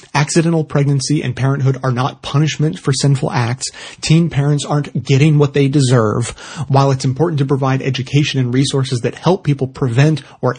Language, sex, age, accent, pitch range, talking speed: English, male, 30-49, American, 125-145 Hz, 170 wpm